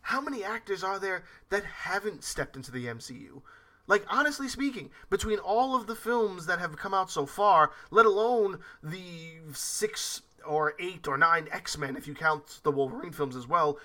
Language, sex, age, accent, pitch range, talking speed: English, male, 20-39, American, 170-245 Hz, 180 wpm